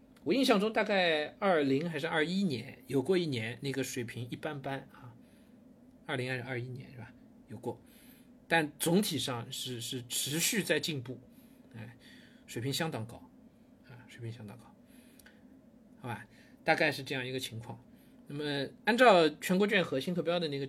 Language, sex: Chinese, male